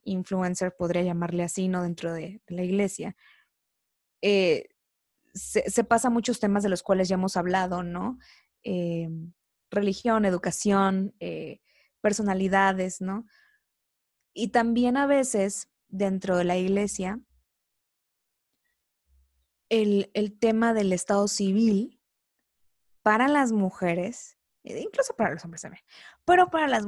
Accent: Mexican